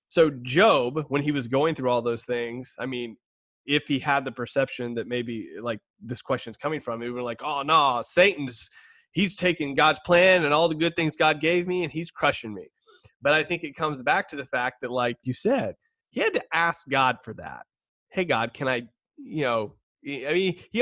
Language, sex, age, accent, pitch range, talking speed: English, male, 30-49, American, 125-175 Hz, 220 wpm